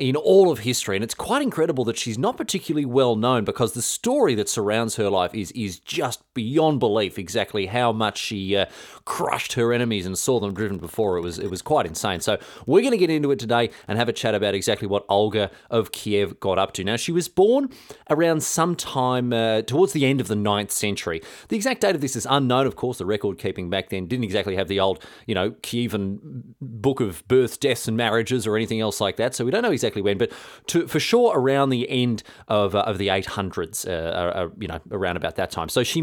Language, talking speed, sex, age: English, 235 wpm, male, 30-49